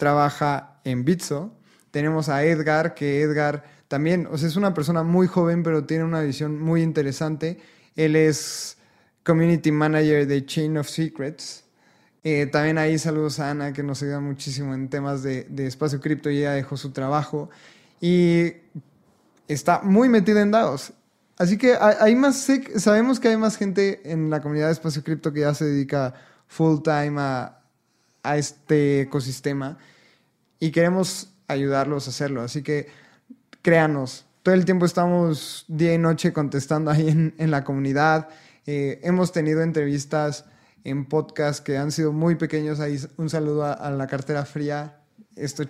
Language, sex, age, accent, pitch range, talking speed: Spanish, male, 20-39, Mexican, 145-170 Hz, 165 wpm